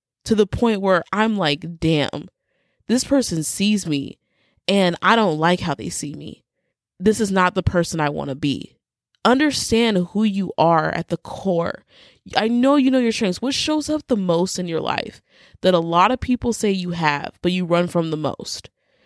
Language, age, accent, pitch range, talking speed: English, 20-39, American, 175-235 Hz, 200 wpm